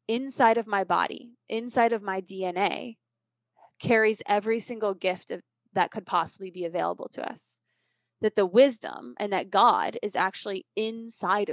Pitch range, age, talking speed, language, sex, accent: 185-220 Hz, 20-39, 145 wpm, English, female, American